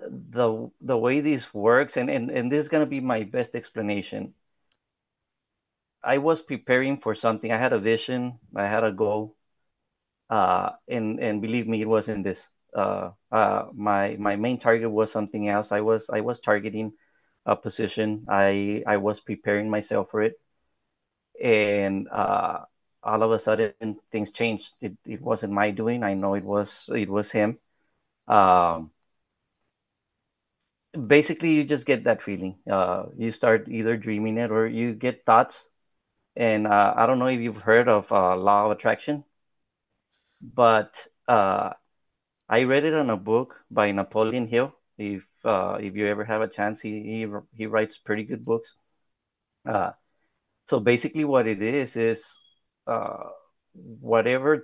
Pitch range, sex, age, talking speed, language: 105-120 Hz, male, 30-49, 160 wpm, English